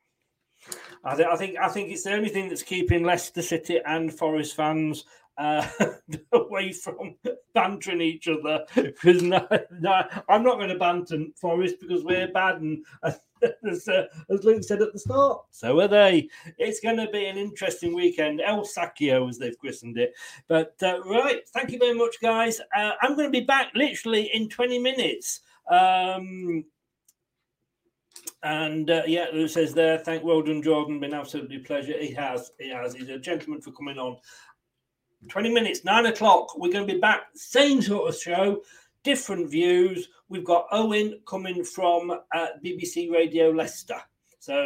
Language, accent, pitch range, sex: English, British, 160-220 Hz, male